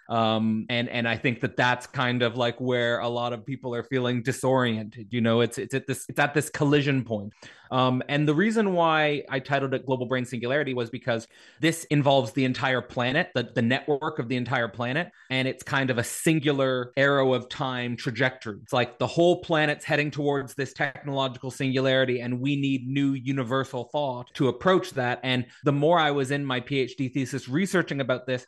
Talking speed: 200 wpm